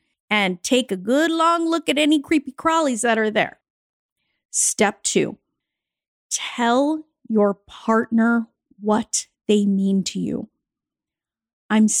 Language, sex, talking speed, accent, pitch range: English, female, 120 wpm, American, 210-285 Hz